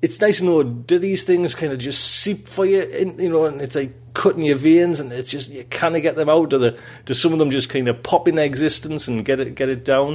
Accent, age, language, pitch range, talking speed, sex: British, 30-49, English, 125-165 Hz, 290 wpm, male